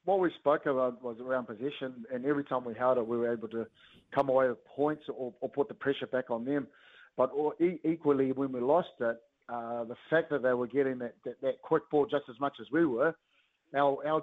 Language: English